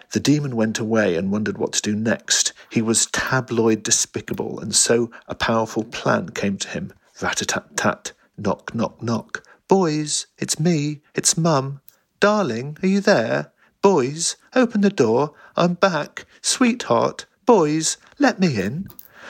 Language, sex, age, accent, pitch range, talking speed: English, male, 50-69, British, 105-150 Hz, 145 wpm